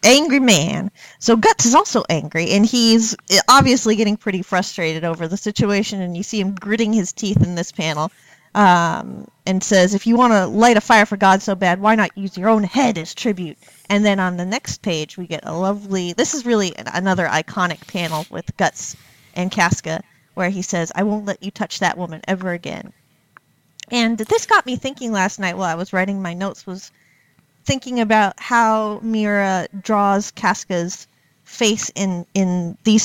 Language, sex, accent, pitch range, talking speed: English, female, American, 175-215 Hz, 190 wpm